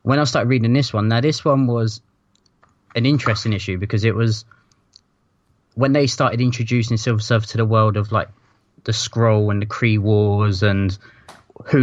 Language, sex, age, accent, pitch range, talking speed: English, male, 20-39, British, 100-115 Hz, 180 wpm